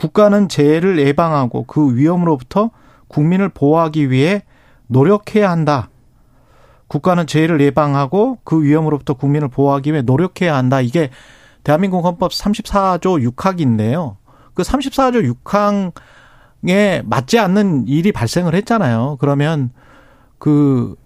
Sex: male